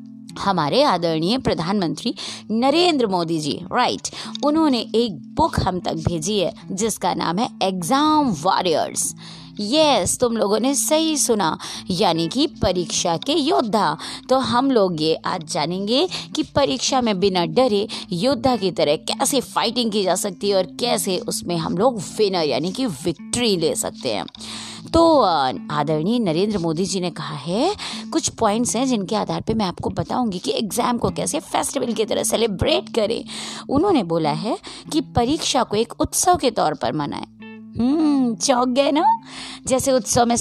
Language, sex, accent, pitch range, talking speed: Hindi, female, native, 190-260 Hz, 160 wpm